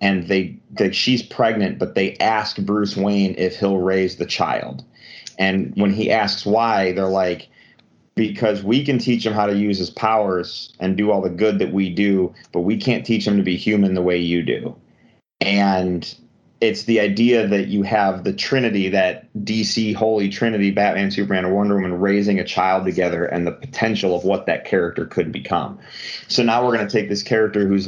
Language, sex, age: English, male, 30-49